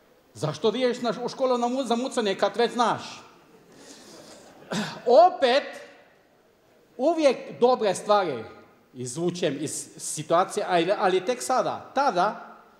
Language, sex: Croatian, male